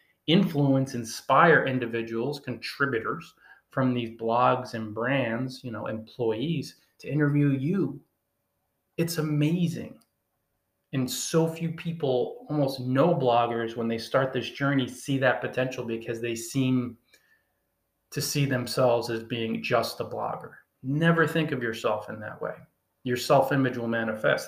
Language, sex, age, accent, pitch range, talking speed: English, male, 30-49, American, 115-135 Hz, 130 wpm